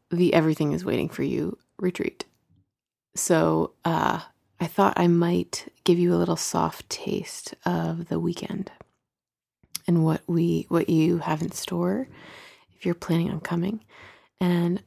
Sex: female